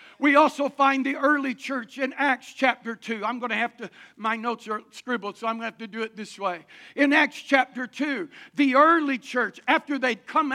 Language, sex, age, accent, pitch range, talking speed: English, male, 60-79, American, 230-285 Hz, 220 wpm